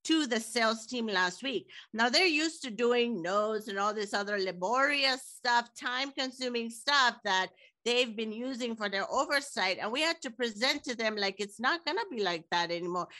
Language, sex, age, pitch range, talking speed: English, female, 50-69, 210-275 Hz, 195 wpm